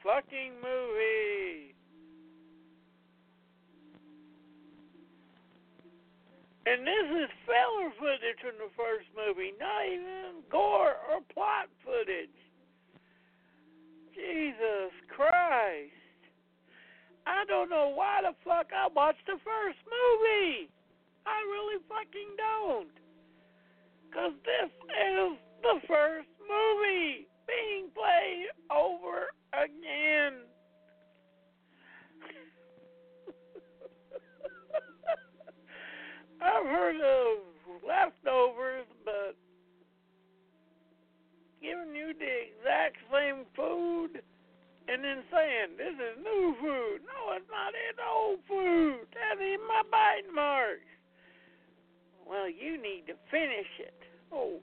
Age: 60-79